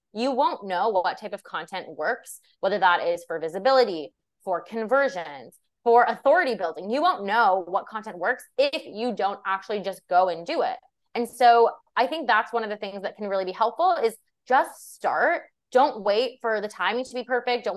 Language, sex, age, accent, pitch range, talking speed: English, female, 20-39, American, 200-255 Hz, 200 wpm